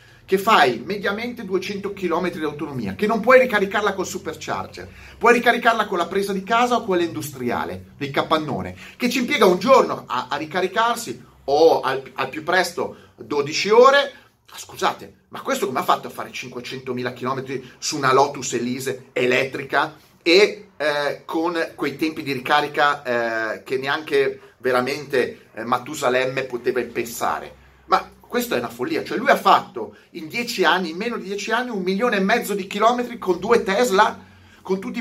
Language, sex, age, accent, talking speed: Italian, male, 30-49, native, 170 wpm